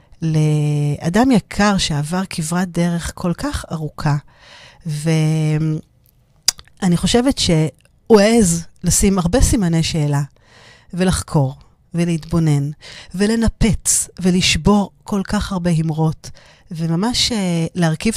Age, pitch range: 40-59, 155-185 Hz